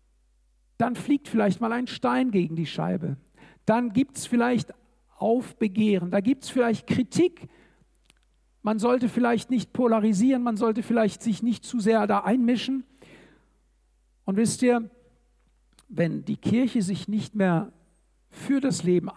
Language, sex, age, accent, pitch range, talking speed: German, male, 60-79, German, 195-245 Hz, 140 wpm